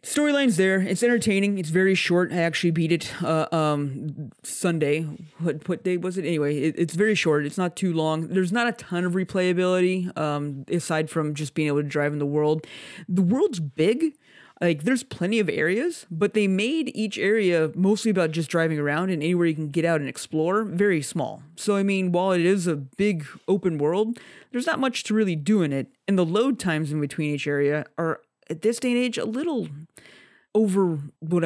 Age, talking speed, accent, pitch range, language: 30-49, 210 wpm, American, 150-190 Hz, English